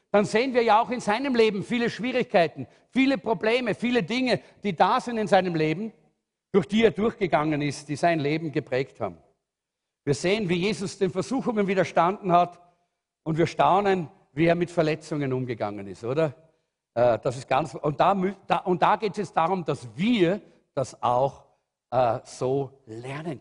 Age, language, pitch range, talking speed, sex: 50-69, German, 160-215 Hz, 165 wpm, male